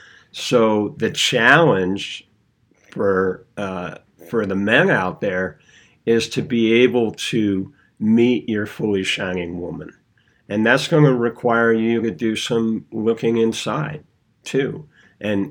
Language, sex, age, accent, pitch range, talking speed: English, male, 50-69, American, 95-115 Hz, 130 wpm